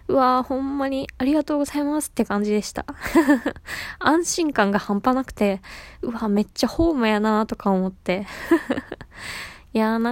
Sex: female